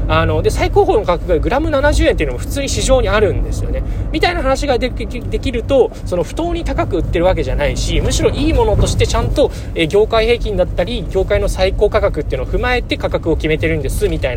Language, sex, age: Japanese, male, 20-39